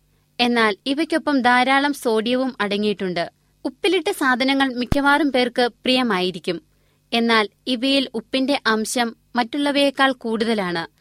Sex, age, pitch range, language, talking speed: female, 20-39, 225-275 Hz, Malayalam, 85 wpm